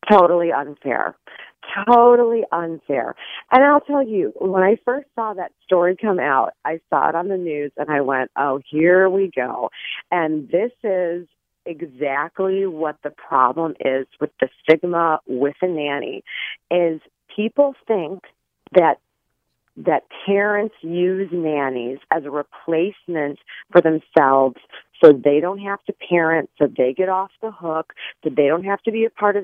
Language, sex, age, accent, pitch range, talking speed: English, female, 40-59, American, 160-210 Hz, 155 wpm